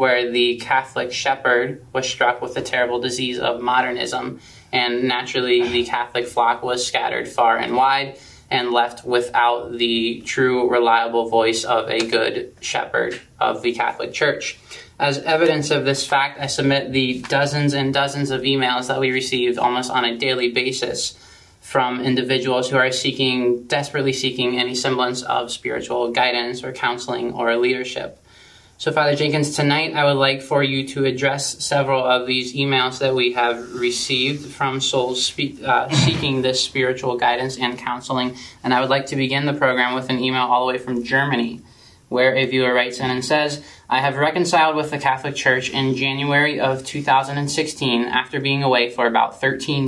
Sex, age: male, 20-39